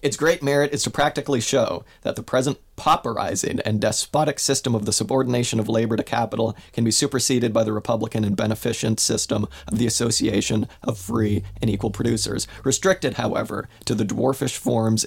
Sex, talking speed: male, 175 wpm